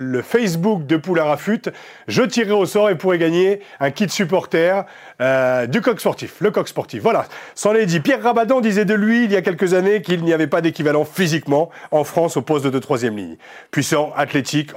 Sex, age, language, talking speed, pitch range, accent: male, 40-59, French, 200 wpm, 130-175 Hz, French